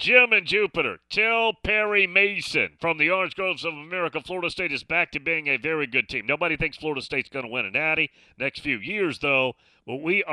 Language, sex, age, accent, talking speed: English, male, 40-59, American, 220 wpm